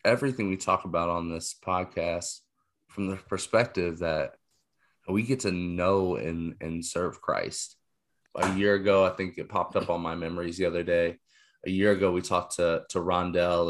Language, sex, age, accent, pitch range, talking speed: English, male, 20-39, American, 90-105 Hz, 180 wpm